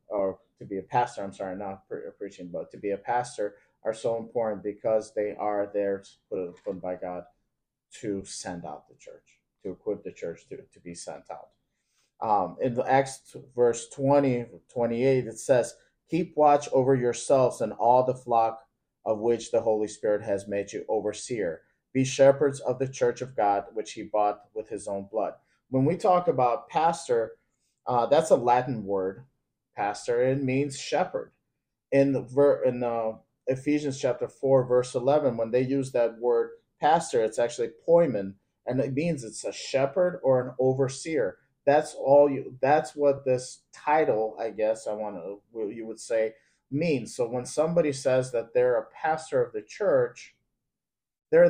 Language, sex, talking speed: English, male, 175 wpm